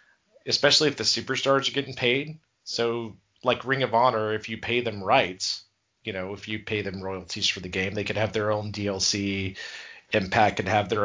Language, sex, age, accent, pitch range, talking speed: English, male, 30-49, American, 100-140 Hz, 200 wpm